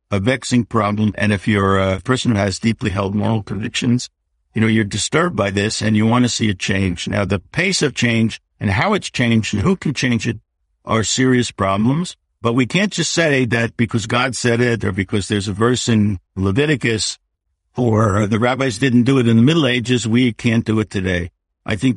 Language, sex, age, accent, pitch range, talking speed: English, male, 60-79, American, 100-125 Hz, 215 wpm